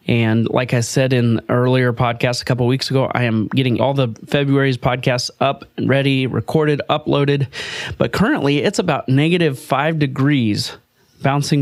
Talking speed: 165 wpm